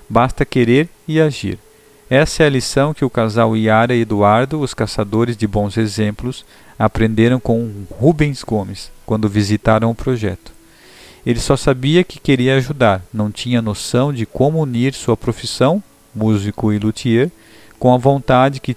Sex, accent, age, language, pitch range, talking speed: male, Brazilian, 40-59, Portuguese, 110-135 Hz, 155 wpm